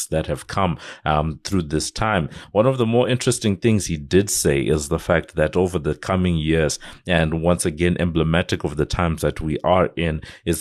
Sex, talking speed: male, 205 wpm